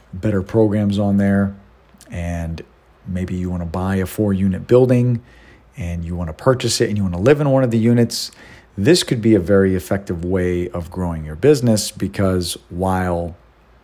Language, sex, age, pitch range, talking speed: English, male, 40-59, 90-115 Hz, 180 wpm